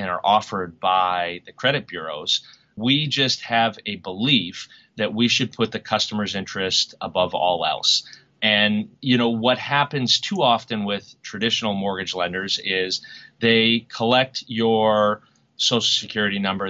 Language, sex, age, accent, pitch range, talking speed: English, male, 30-49, American, 95-125 Hz, 145 wpm